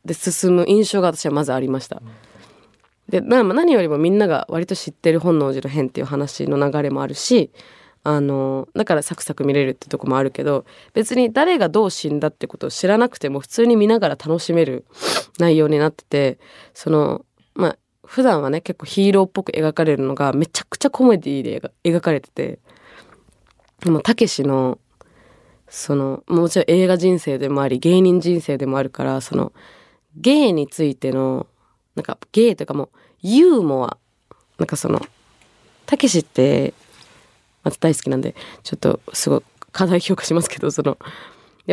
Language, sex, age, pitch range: Japanese, female, 20-39, 140-185 Hz